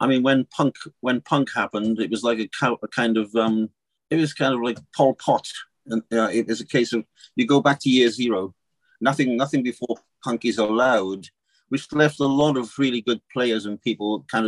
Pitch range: 110-135 Hz